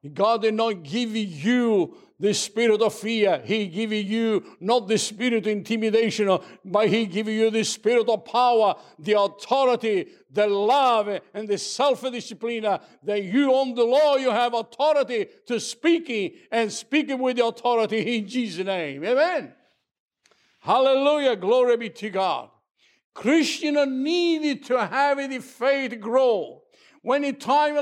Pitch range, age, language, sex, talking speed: 230-290 Hz, 60-79, English, male, 145 wpm